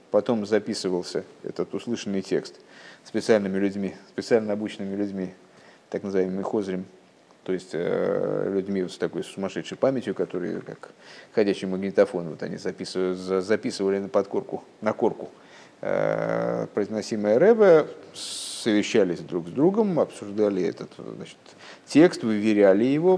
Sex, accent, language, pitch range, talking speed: male, native, Russian, 100-125 Hz, 120 wpm